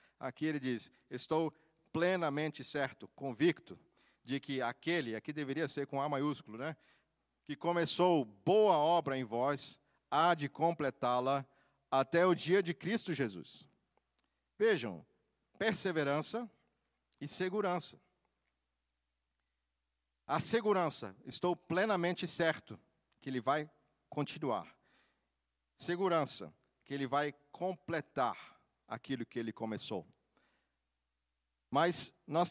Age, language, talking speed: 50-69, Portuguese, 105 wpm